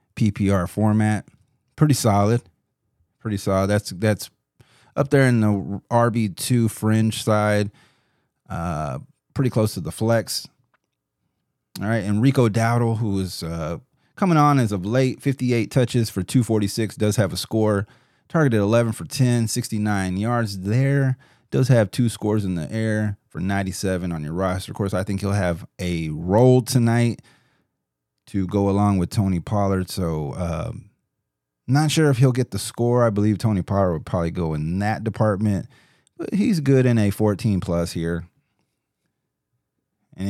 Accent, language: American, English